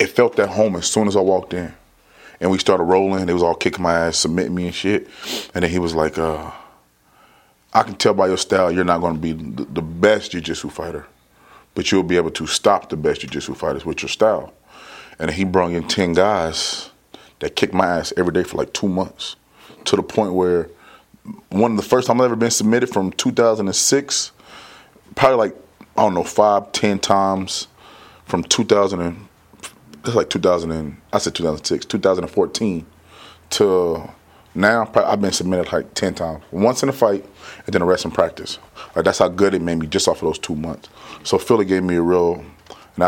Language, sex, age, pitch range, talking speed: English, male, 30-49, 85-100 Hz, 205 wpm